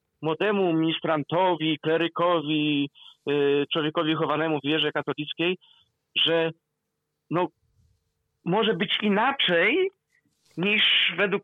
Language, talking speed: Polish, 85 wpm